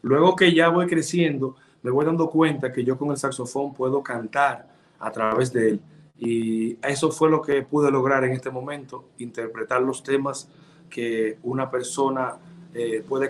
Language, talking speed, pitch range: English, 170 wpm, 130-160 Hz